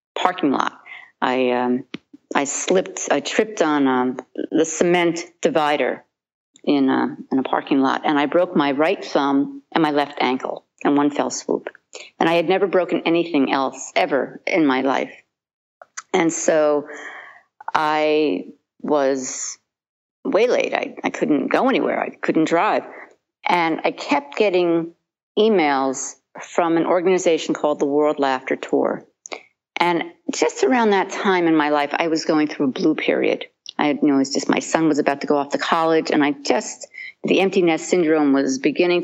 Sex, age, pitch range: female, 50-69, 140-180 Hz